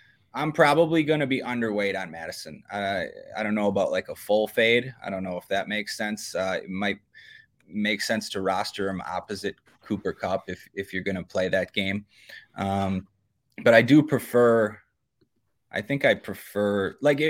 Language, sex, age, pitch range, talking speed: English, male, 20-39, 105-150 Hz, 185 wpm